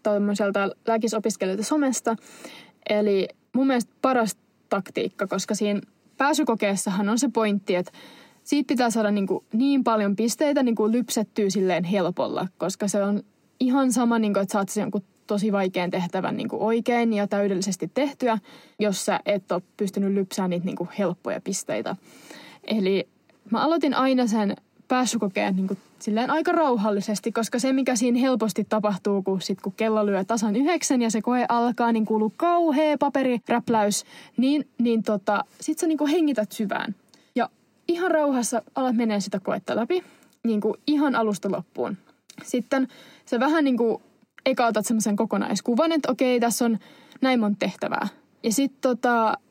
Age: 20-39